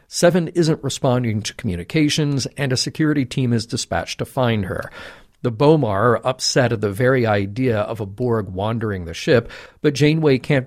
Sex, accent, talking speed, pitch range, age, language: male, American, 175 wpm, 110-145 Hz, 50-69, English